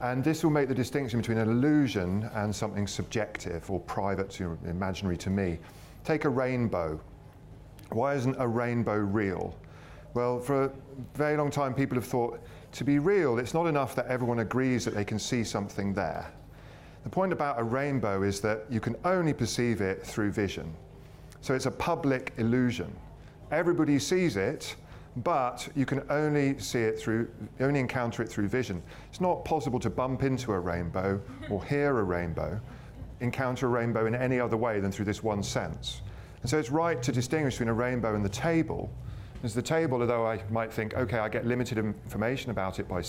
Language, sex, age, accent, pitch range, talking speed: English, male, 40-59, British, 105-135 Hz, 190 wpm